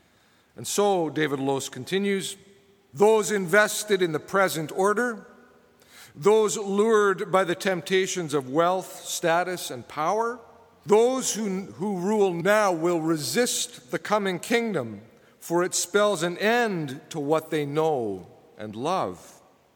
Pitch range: 160-210 Hz